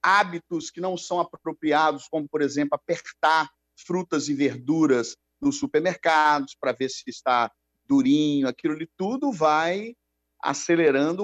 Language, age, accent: Portuguese, 50-69, Brazilian